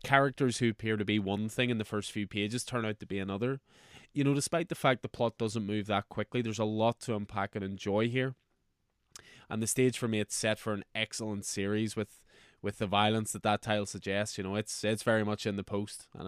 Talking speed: 240 wpm